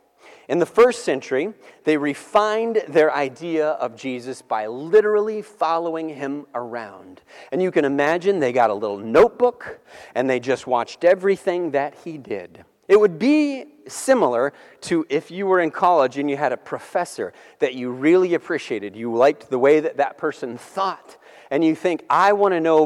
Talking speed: 175 wpm